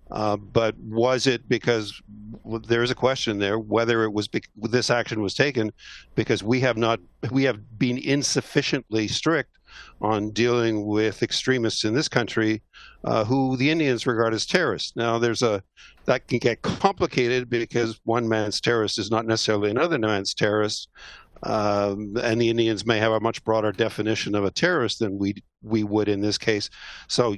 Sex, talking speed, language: male, 175 wpm, English